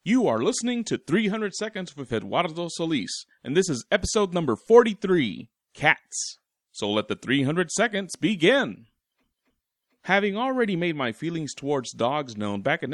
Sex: male